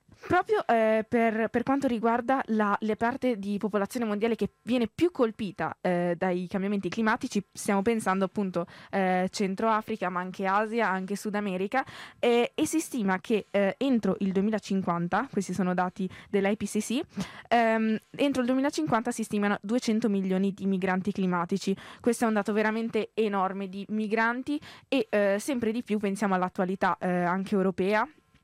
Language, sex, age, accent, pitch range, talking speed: Italian, female, 20-39, native, 195-230 Hz, 155 wpm